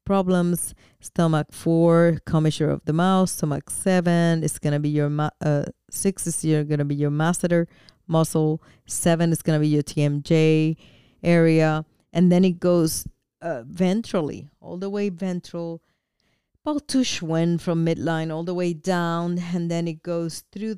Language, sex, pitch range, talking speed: English, female, 155-175 Hz, 160 wpm